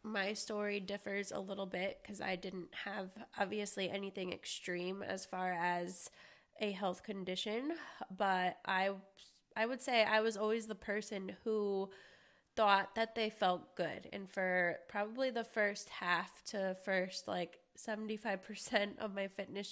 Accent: American